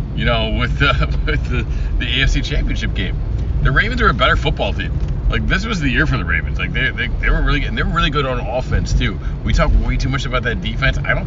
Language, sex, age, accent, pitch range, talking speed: English, male, 40-59, American, 95-125 Hz, 265 wpm